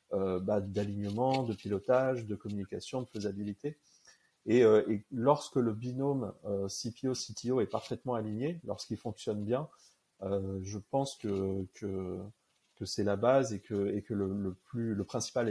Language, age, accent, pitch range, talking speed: French, 30-49, French, 100-125 Hz, 165 wpm